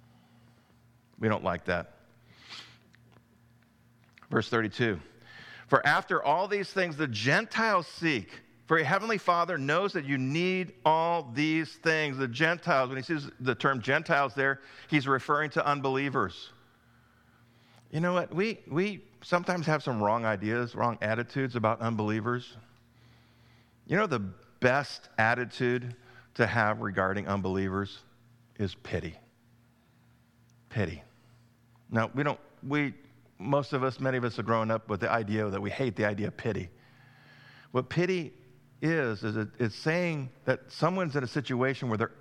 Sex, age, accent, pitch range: male, 50-69, American, 115-145 Hz